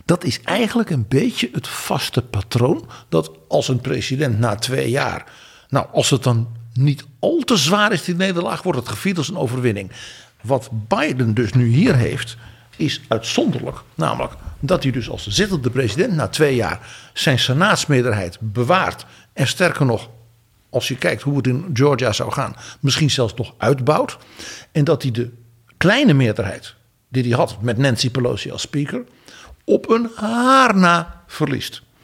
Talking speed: 165 wpm